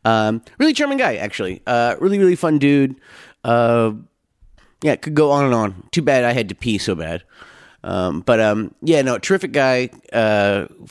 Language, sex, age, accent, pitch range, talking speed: English, male, 30-49, American, 110-150 Hz, 185 wpm